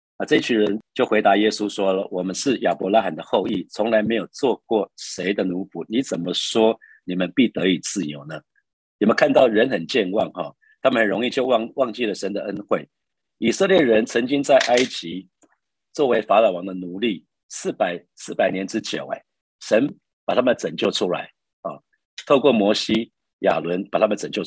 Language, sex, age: Chinese, male, 50-69